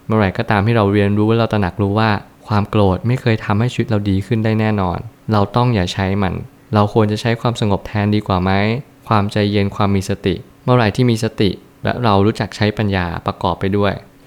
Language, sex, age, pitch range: Thai, male, 20-39, 100-115 Hz